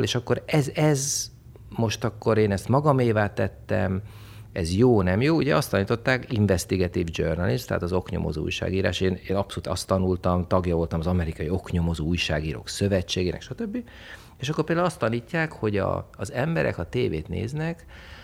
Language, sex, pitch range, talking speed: Hungarian, male, 90-120 Hz, 155 wpm